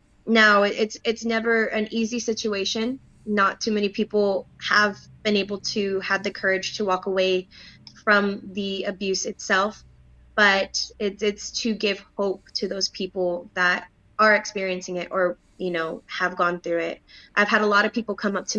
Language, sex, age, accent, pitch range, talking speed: English, female, 20-39, American, 180-205 Hz, 175 wpm